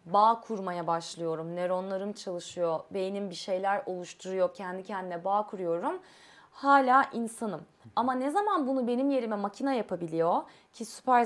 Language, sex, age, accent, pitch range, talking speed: Turkish, female, 30-49, native, 190-260 Hz, 135 wpm